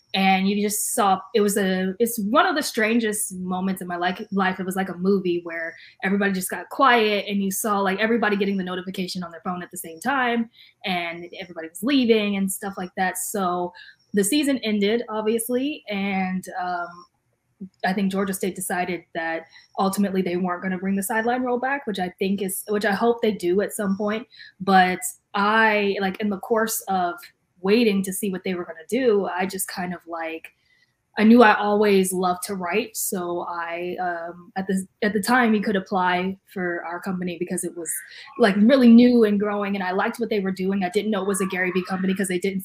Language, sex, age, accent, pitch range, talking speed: English, female, 20-39, American, 180-210 Hz, 215 wpm